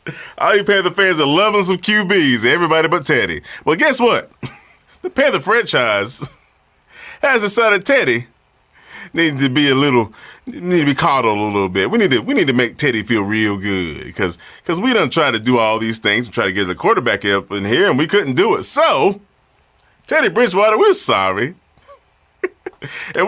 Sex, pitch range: male, 105-160 Hz